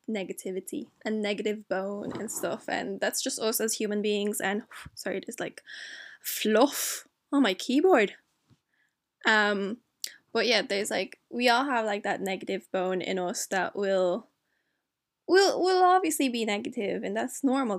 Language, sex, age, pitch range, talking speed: English, female, 10-29, 210-255 Hz, 150 wpm